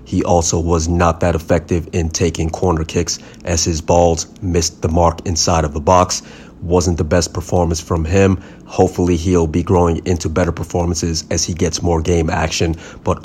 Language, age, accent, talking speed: English, 30-49, American, 180 wpm